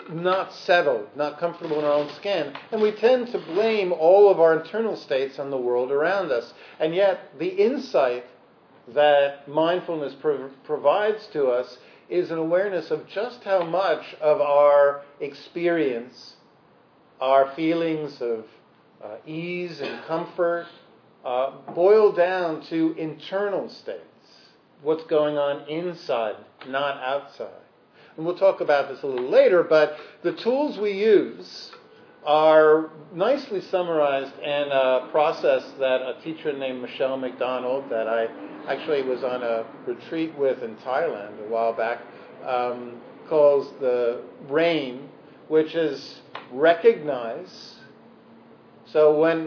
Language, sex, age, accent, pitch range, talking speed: English, male, 50-69, American, 135-175 Hz, 130 wpm